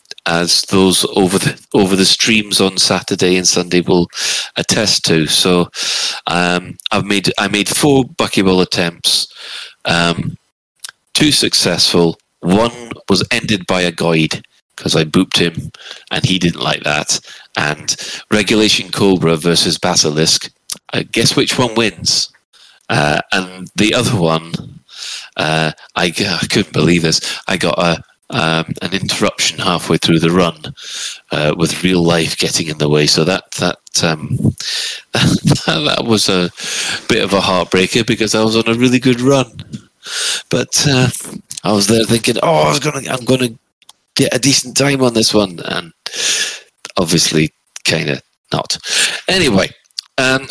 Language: English